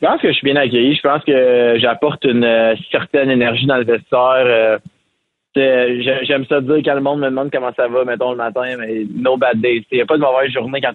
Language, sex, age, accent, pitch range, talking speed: French, male, 20-39, Canadian, 110-130 Hz, 250 wpm